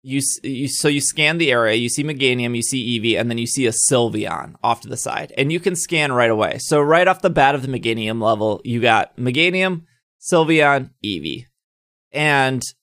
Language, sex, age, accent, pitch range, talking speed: English, male, 20-39, American, 115-145 Hz, 205 wpm